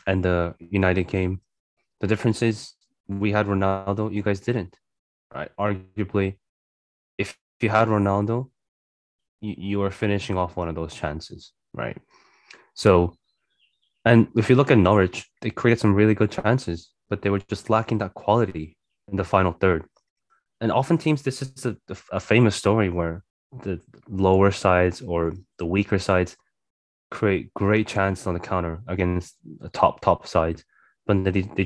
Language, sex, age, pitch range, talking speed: English, male, 20-39, 90-105 Hz, 155 wpm